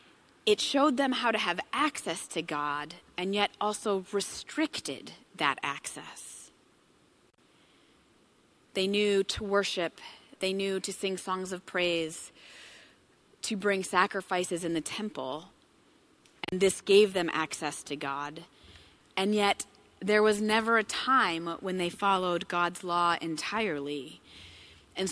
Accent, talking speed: American, 125 wpm